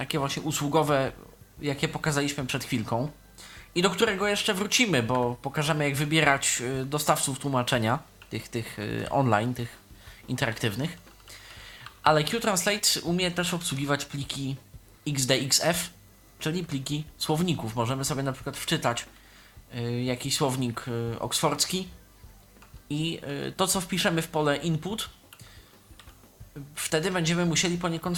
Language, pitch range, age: Polish, 120-160 Hz, 20-39